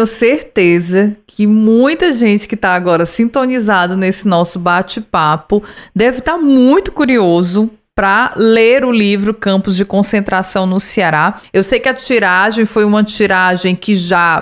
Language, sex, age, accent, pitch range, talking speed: Portuguese, female, 20-39, Brazilian, 195-255 Hz, 145 wpm